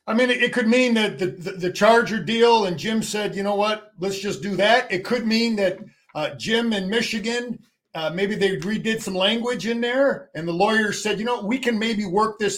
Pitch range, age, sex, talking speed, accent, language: 185-225 Hz, 50-69, male, 230 wpm, American, English